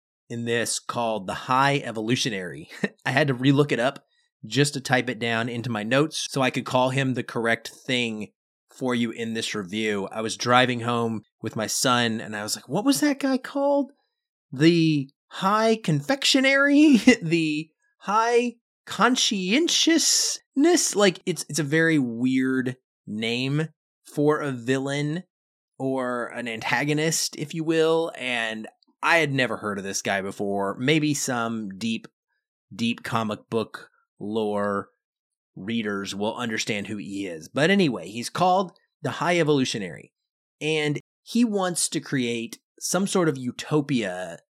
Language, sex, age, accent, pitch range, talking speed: English, male, 30-49, American, 115-180 Hz, 145 wpm